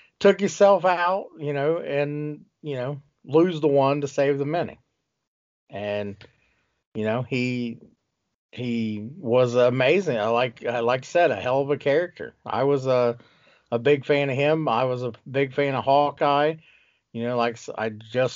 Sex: male